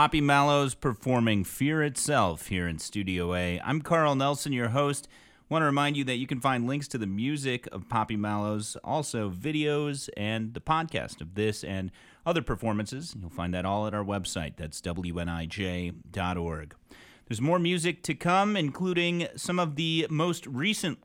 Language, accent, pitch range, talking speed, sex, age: English, American, 105-150 Hz, 170 wpm, male, 30-49